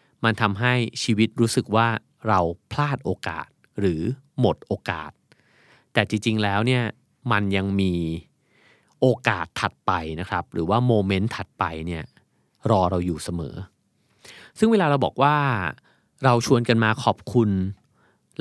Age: 30-49